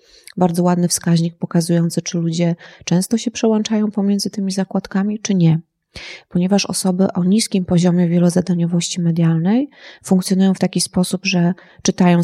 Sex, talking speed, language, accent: female, 130 wpm, Polish, native